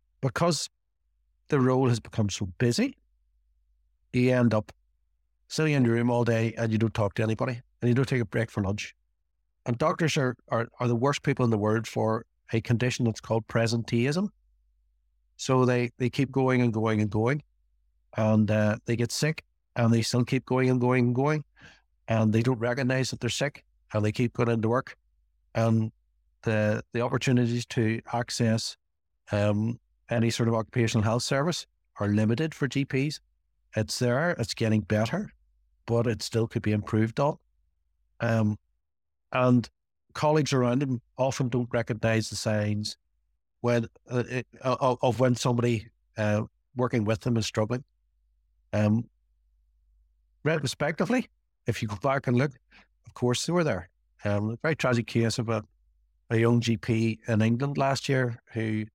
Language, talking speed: English, 165 wpm